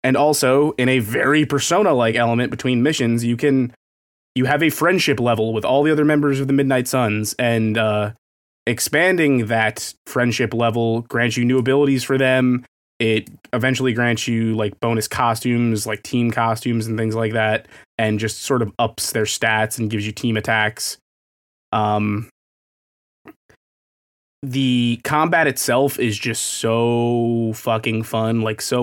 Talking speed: 155 wpm